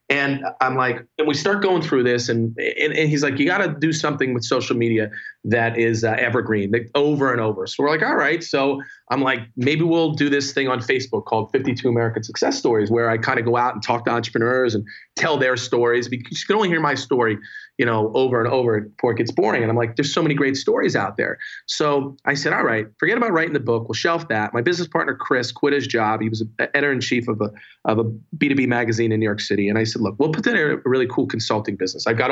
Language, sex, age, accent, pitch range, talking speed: English, male, 30-49, American, 115-150 Hz, 255 wpm